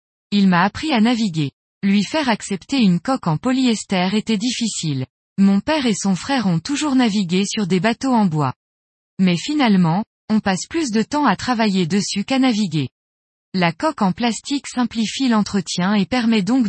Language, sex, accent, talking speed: French, female, French, 175 wpm